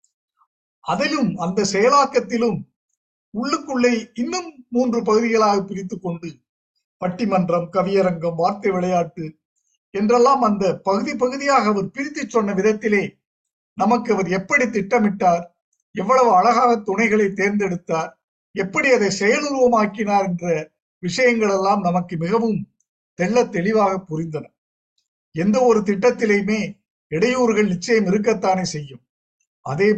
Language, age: Tamil, 50-69